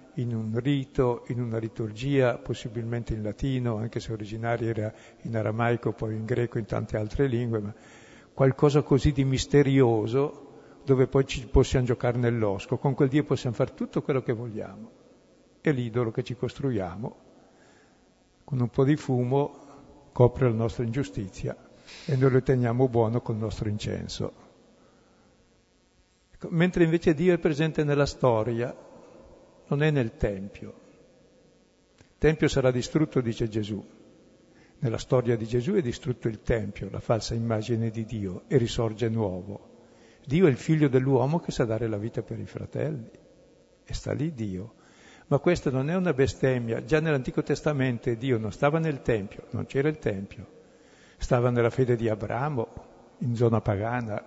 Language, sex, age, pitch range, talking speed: Italian, male, 60-79, 115-140 Hz, 155 wpm